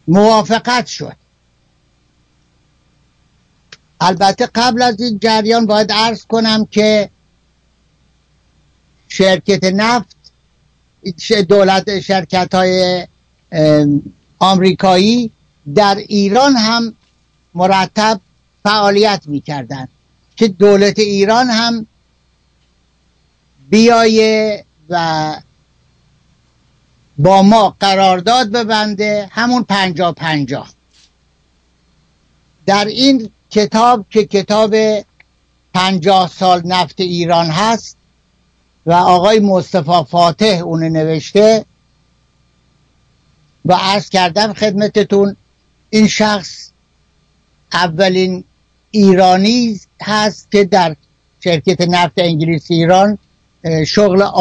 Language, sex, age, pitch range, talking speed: Persian, male, 60-79, 170-215 Hz, 75 wpm